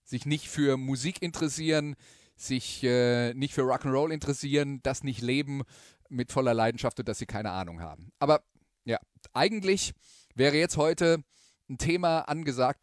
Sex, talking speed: male, 150 wpm